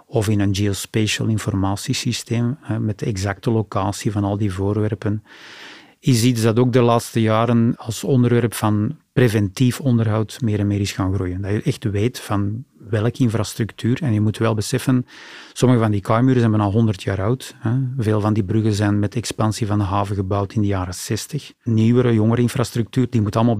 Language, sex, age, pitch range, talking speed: Dutch, male, 40-59, 105-125 Hz, 185 wpm